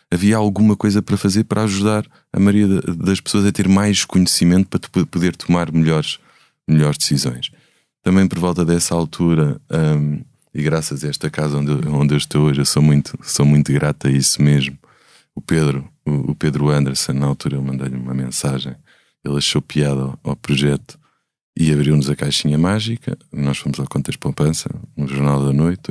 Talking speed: 175 wpm